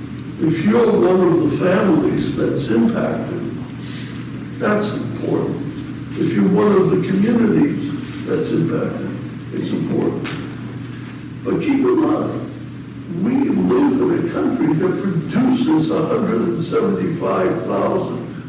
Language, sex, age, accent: English, male, 60-79, American